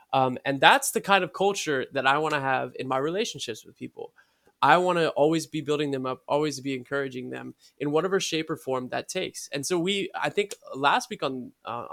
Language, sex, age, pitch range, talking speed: English, male, 20-39, 130-160 Hz, 225 wpm